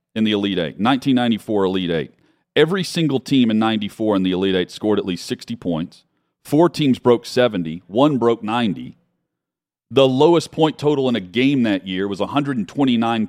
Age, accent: 40-59, American